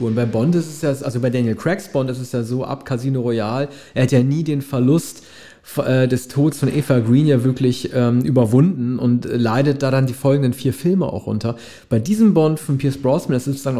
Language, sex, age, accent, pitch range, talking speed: German, male, 40-59, German, 125-150 Hz, 225 wpm